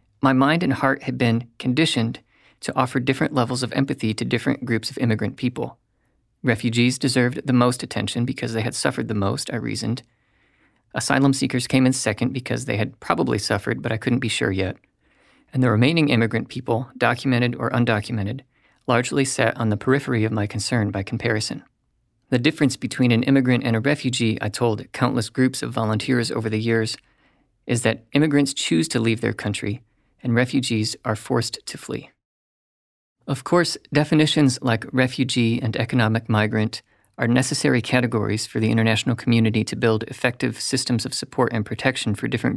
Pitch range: 110-130 Hz